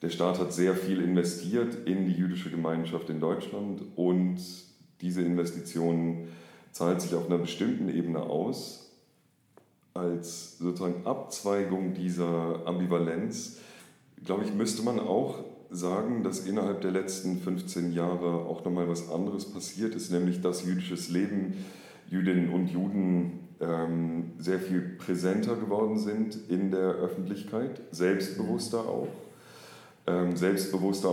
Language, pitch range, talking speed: German, 85-95 Hz, 125 wpm